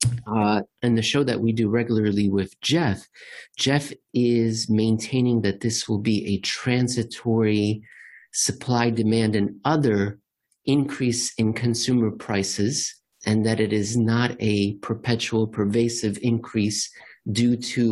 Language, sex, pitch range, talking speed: English, male, 105-125 Hz, 125 wpm